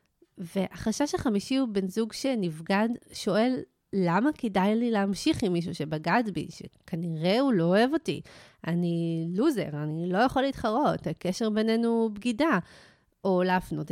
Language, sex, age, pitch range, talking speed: Hebrew, female, 30-49, 180-235 Hz, 135 wpm